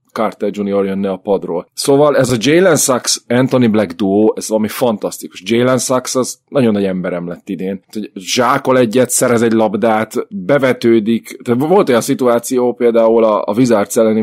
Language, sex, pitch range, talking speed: Hungarian, male, 105-130 Hz, 150 wpm